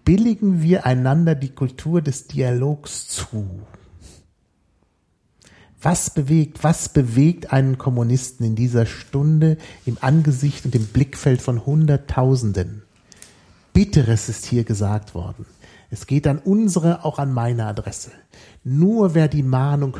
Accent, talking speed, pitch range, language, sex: German, 125 wpm, 115-155 Hz, German, male